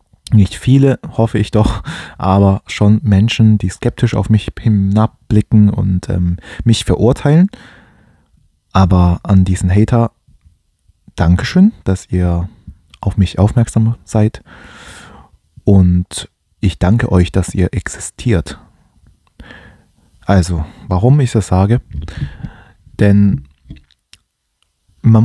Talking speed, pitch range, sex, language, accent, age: 100 wpm, 95-110 Hz, male, German, German, 20-39